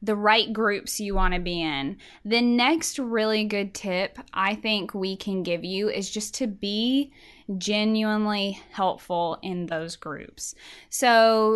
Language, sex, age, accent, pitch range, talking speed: English, female, 10-29, American, 195-240 Hz, 145 wpm